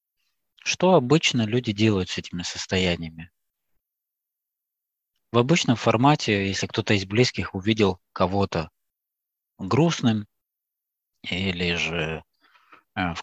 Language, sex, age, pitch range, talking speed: Russian, male, 20-39, 90-120 Hz, 90 wpm